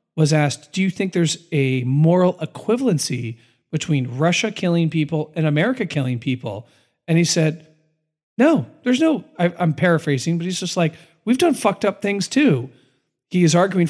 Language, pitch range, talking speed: English, 145-195 Hz, 170 wpm